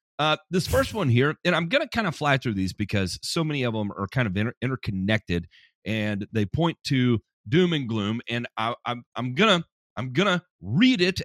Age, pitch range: 40-59, 95-140 Hz